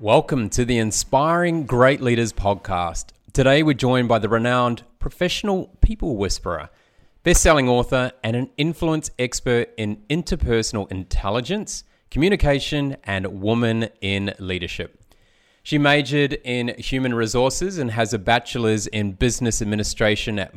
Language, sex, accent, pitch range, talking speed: English, male, Australian, 105-135 Hz, 125 wpm